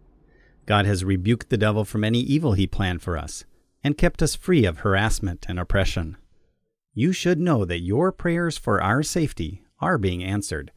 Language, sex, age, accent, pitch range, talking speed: English, male, 40-59, American, 90-125 Hz, 180 wpm